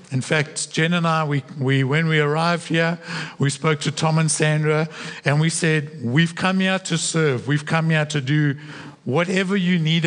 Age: 60-79